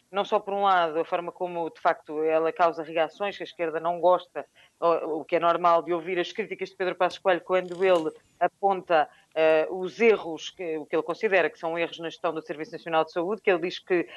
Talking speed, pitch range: 230 wpm, 160-185 Hz